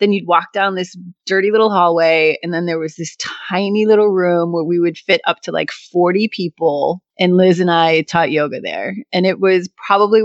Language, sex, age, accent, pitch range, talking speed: English, female, 30-49, American, 160-200 Hz, 210 wpm